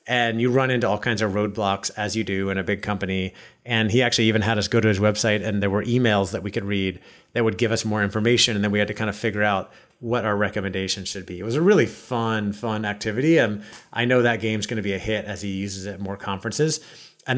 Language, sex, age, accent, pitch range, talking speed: English, male, 30-49, American, 100-115 Hz, 270 wpm